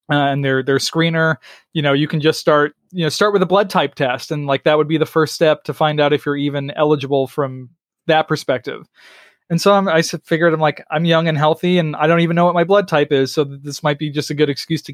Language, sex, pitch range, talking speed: English, male, 150-175 Hz, 265 wpm